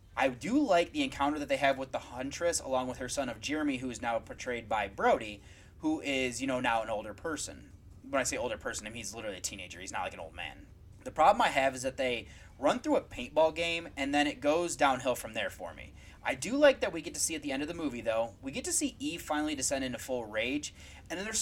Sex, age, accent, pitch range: male, 30-49, American, 125-180 Hz